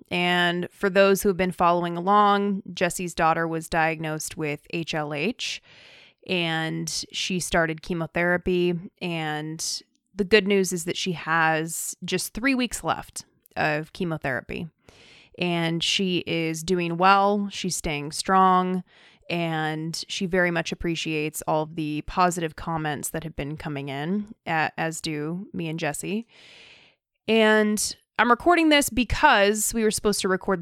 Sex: female